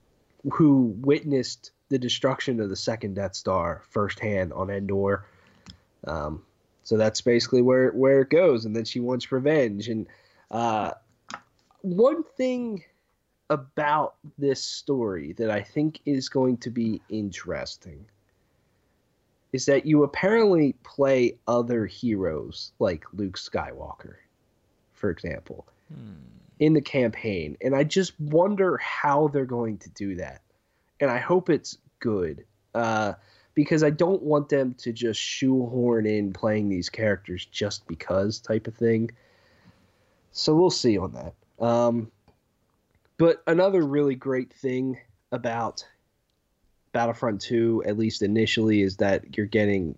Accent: American